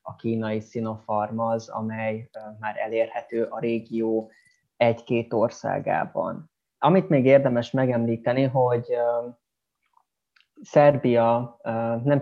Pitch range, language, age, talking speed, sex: 115-130 Hz, Hungarian, 20-39, 90 wpm, male